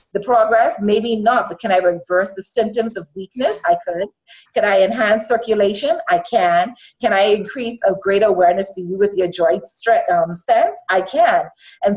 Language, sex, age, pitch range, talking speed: English, female, 30-49, 190-240 Hz, 180 wpm